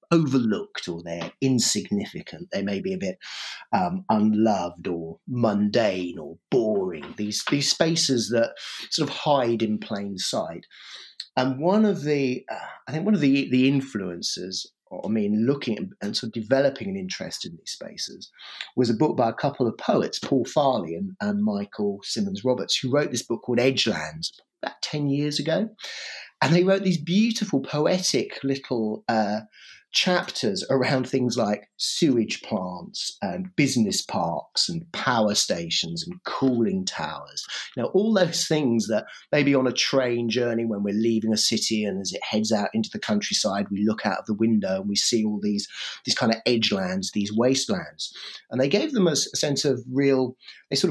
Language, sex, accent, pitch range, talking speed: English, male, British, 110-180 Hz, 175 wpm